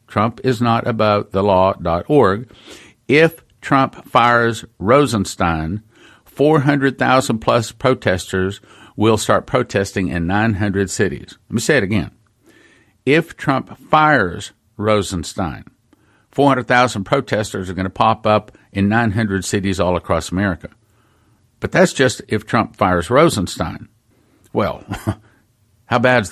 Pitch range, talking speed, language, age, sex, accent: 100-130 Hz, 115 wpm, English, 50-69, male, American